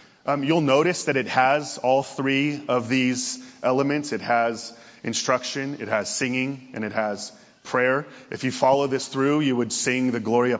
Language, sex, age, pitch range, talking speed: English, male, 30-49, 115-130 Hz, 175 wpm